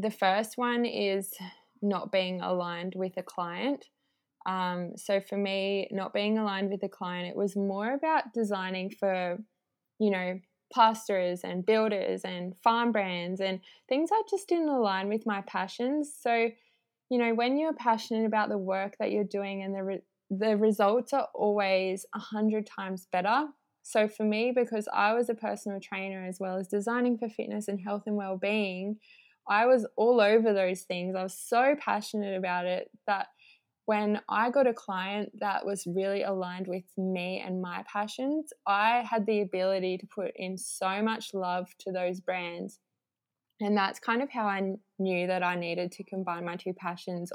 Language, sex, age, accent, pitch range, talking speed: English, female, 10-29, Australian, 185-220 Hz, 175 wpm